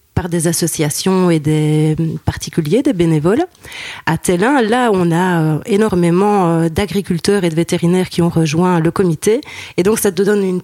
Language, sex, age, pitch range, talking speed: French, female, 30-49, 165-200 Hz, 175 wpm